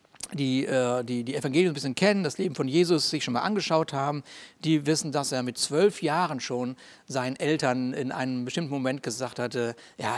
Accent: German